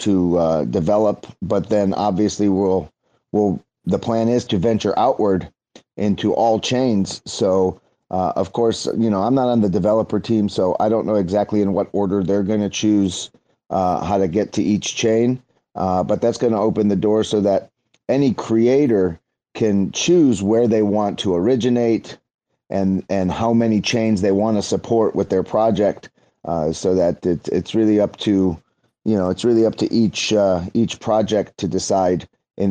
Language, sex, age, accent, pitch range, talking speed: English, male, 30-49, American, 95-115 Hz, 180 wpm